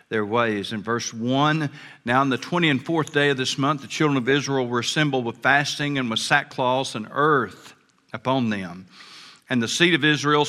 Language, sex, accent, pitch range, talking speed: English, male, American, 120-145 Hz, 200 wpm